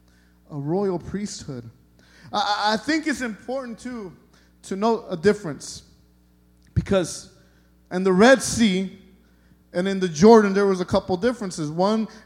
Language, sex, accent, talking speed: English, male, American, 135 wpm